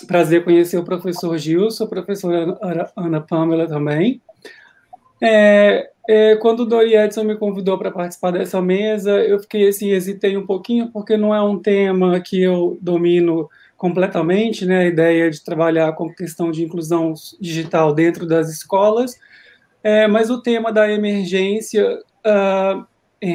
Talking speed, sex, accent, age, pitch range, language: 140 wpm, male, Brazilian, 20-39, 180-215 Hz, Portuguese